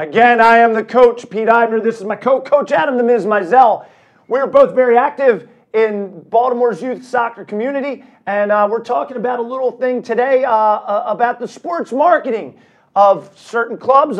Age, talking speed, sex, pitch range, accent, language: 40-59, 175 wpm, male, 200-250 Hz, American, English